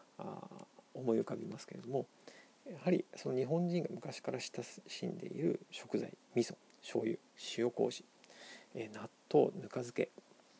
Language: Japanese